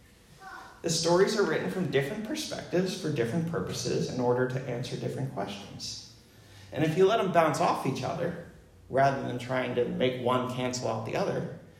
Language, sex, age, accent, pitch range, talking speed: English, male, 30-49, American, 125-170 Hz, 180 wpm